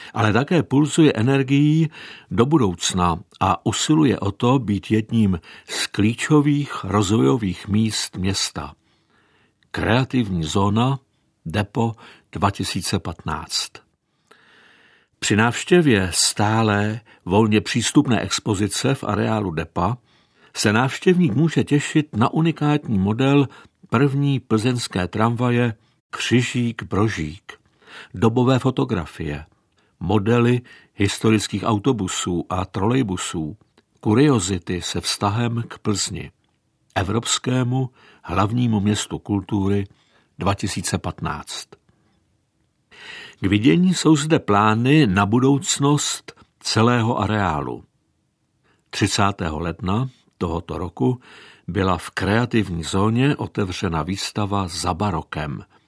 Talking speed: 85 wpm